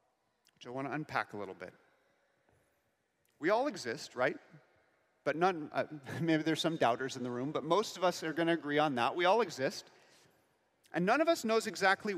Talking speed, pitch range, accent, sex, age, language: 200 wpm, 150-210 Hz, American, male, 40-59, English